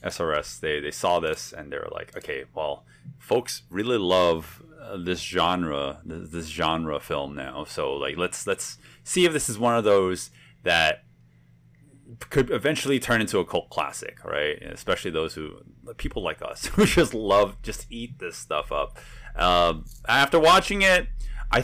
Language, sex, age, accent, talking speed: English, male, 30-49, American, 170 wpm